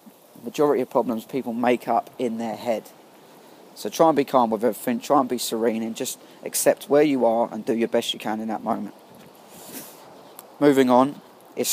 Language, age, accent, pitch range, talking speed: English, 20-39, British, 115-135 Hz, 195 wpm